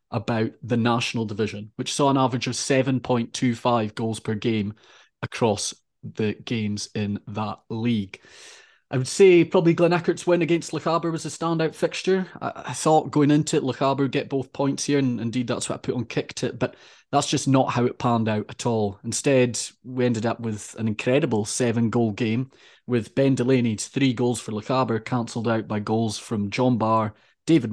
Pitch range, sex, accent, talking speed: 115-145 Hz, male, British, 185 wpm